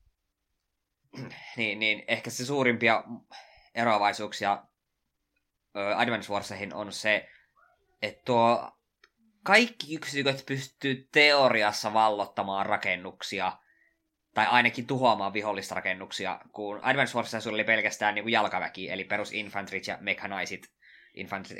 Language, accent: Finnish, native